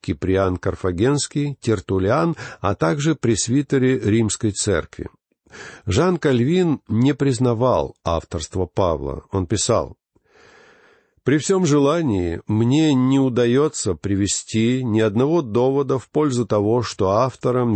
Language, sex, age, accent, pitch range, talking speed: Russian, male, 50-69, native, 100-140 Hz, 105 wpm